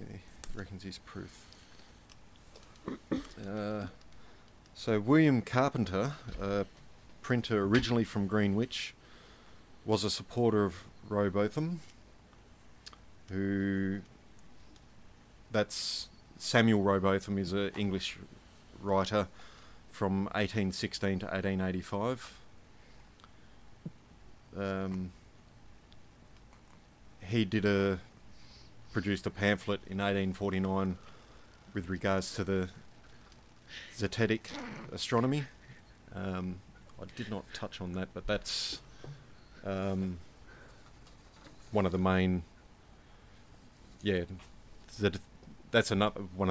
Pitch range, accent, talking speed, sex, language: 95-110 Hz, Australian, 80 wpm, male, English